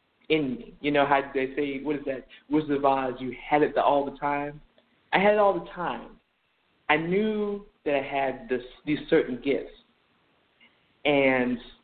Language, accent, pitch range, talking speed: English, American, 125-160 Hz, 175 wpm